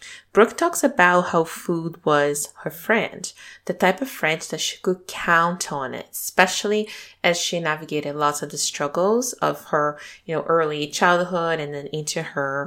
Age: 20-39